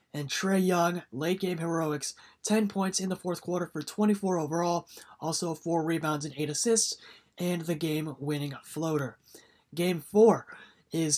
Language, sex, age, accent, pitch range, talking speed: English, male, 20-39, American, 150-185 Hz, 145 wpm